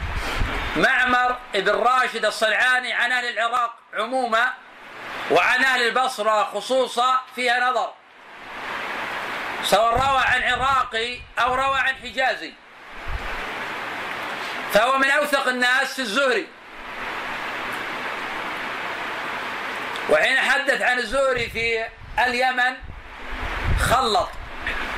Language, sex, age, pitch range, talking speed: Arabic, male, 40-59, 240-260 Hz, 85 wpm